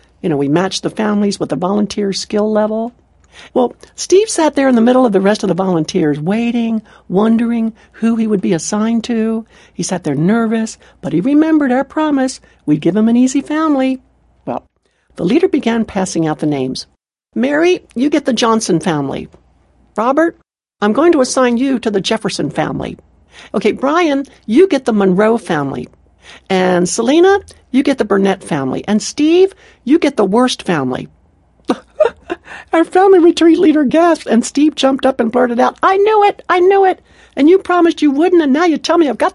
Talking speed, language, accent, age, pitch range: 185 wpm, English, American, 60-79, 205-310 Hz